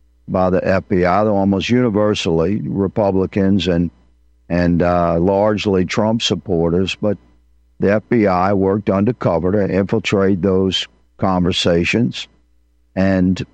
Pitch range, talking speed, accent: 85-105 Hz, 95 wpm, American